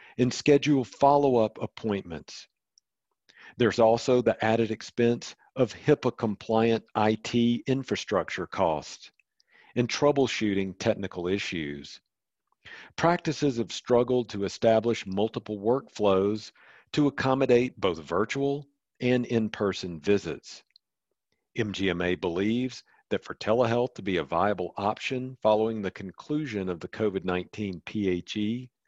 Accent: American